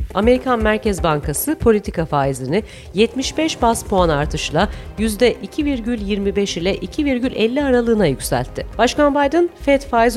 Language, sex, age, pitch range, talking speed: Turkish, female, 40-59, 170-260 Hz, 110 wpm